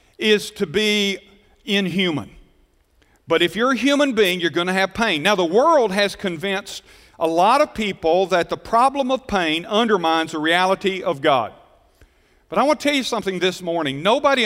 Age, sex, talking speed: 50-69, male, 185 wpm